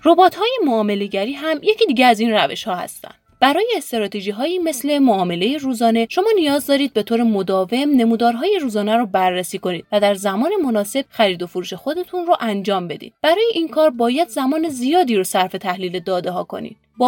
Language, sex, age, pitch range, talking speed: Persian, female, 30-49, 200-295 Hz, 185 wpm